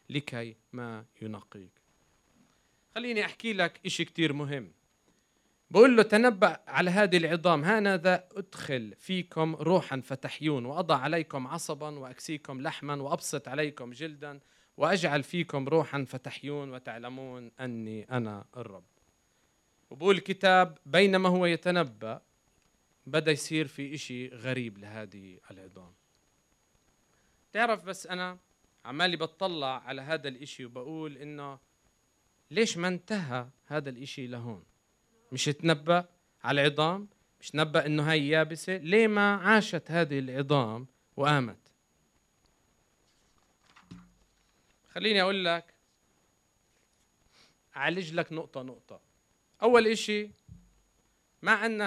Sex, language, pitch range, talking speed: male, English, 130-175 Hz, 105 wpm